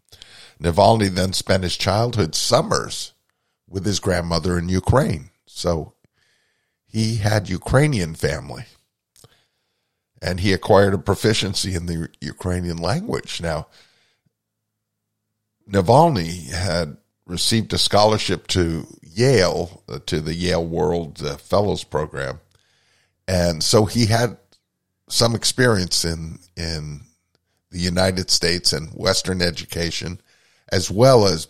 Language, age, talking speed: English, 50-69, 110 wpm